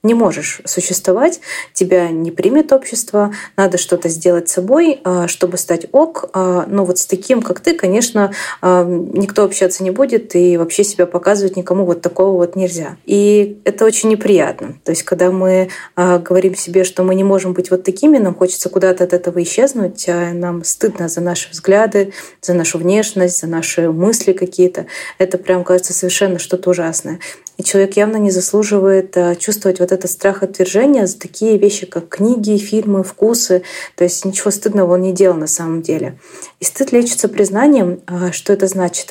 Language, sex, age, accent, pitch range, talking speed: Russian, female, 20-39, native, 180-200 Hz, 170 wpm